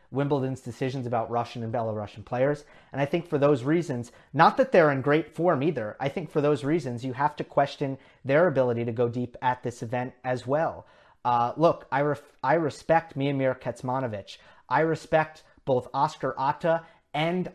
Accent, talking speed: American, 180 wpm